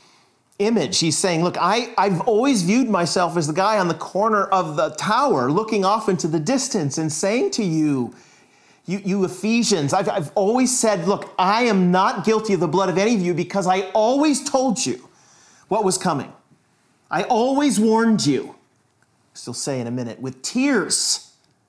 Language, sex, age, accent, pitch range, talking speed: English, male, 40-59, American, 135-190 Hz, 185 wpm